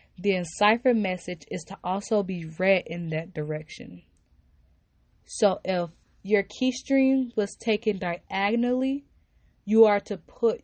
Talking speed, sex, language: 125 wpm, female, English